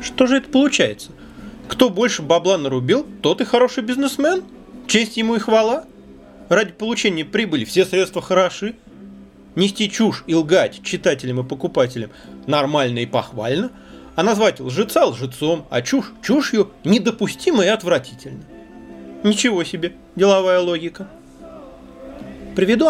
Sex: male